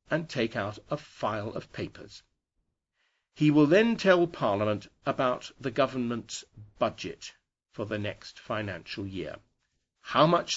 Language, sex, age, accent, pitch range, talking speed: English, male, 50-69, British, 100-135 Hz, 130 wpm